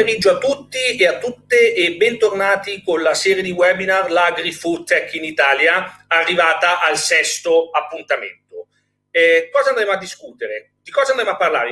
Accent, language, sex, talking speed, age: native, Italian, male, 165 wpm, 40-59